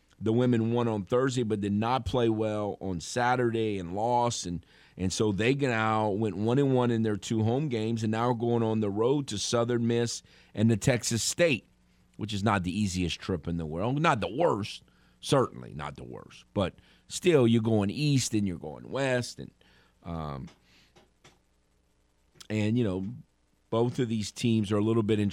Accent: American